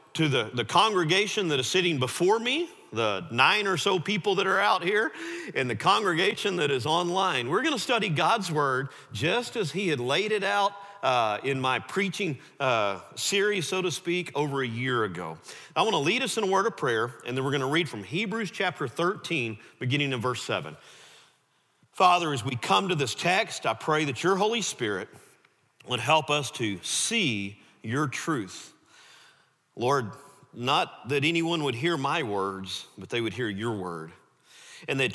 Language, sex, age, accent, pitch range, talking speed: English, male, 40-59, American, 125-195 Hz, 185 wpm